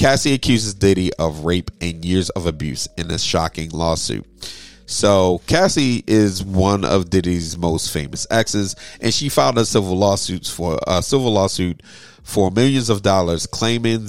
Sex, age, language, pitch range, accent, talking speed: male, 30-49, English, 85-115 Hz, American, 160 wpm